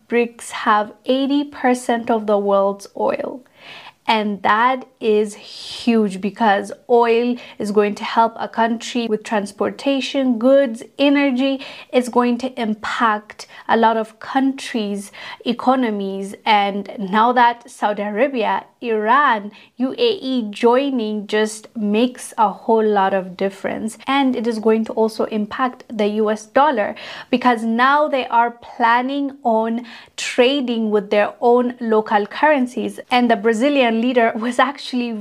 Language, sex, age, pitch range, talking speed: English, female, 20-39, 215-260 Hz, 130 wpm